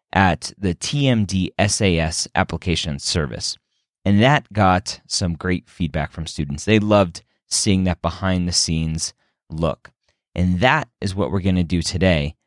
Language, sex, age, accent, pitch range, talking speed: English, male, 30-49, American, 85-105 Hz, 135 wpm